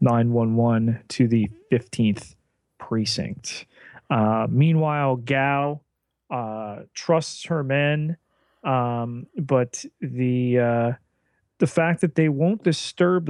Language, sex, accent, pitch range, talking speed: English, male, American, 120-140 Hz, 100 wpm